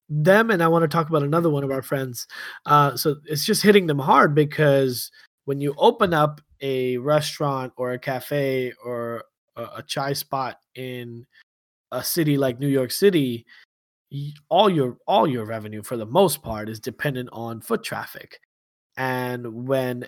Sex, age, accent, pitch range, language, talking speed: male, 20-39, American, 125-160 Hz, English, 165 wpm